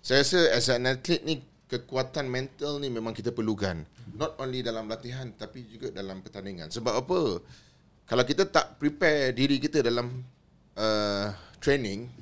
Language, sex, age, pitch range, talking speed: Malay, male, 30-49, 105-140 Hz, 145 wpm